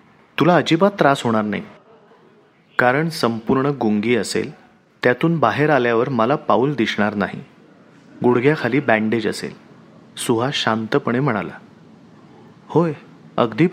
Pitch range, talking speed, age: 120-155 Hz, 105 wpm, 30-49